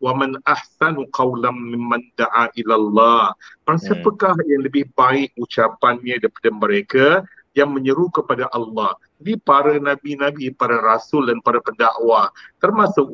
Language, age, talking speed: Malay, 50-69, 130 wpm